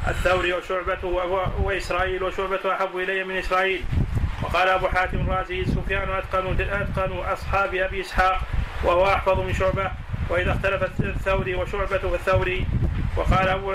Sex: male